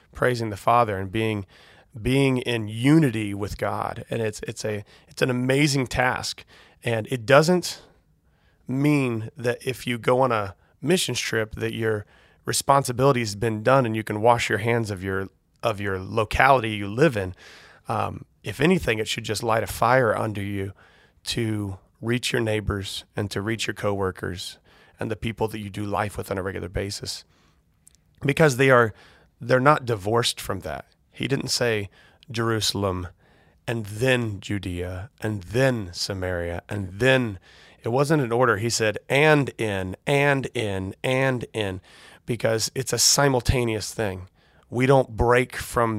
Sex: male